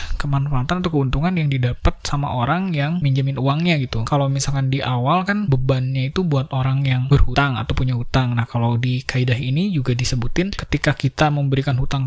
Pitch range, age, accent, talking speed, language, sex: 135-165 Hz, 20-39, native, 180 wpm, Indonesian, male